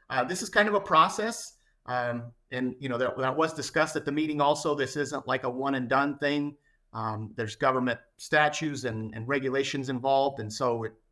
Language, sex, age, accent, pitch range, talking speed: English, male, 40-59, American, 125-150 Hz, 205 wpm